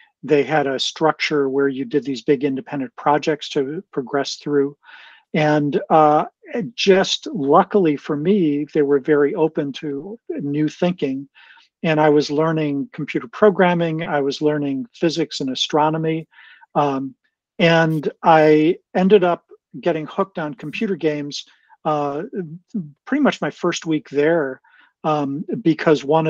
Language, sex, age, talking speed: English, male, 50-69, 135 wpm